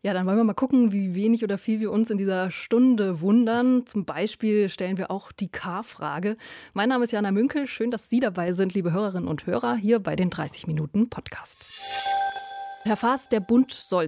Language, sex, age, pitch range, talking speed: German, female, 20-39, 185-235 Hz, 205 wpm